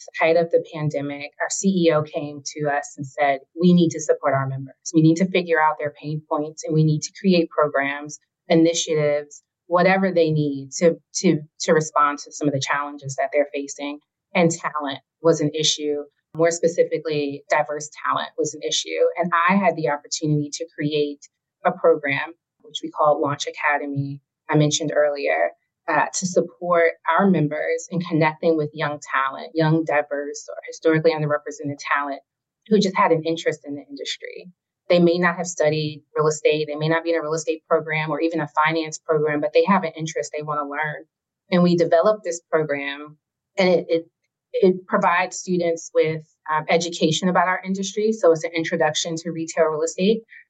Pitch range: 150-170 Hz